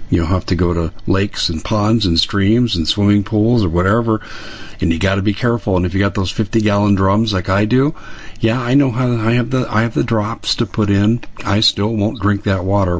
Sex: male